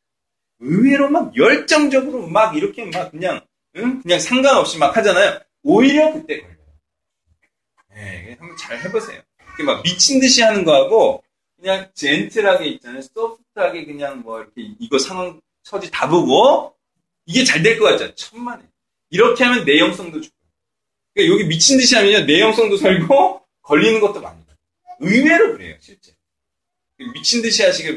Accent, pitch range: native, 145-240 Hz